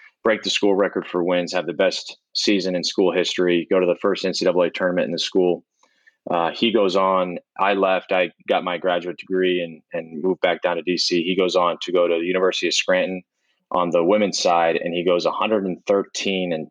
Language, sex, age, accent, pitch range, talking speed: English, male, 20-39, American, 80-90 Hz, 210 wpm